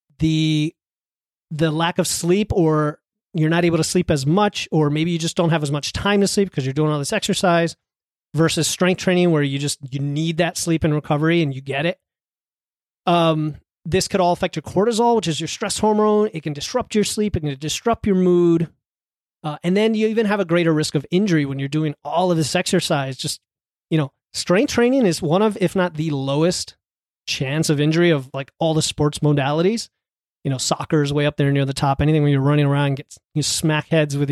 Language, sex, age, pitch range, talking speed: English, male, 30-49, 145-180 Hz, 220 wpm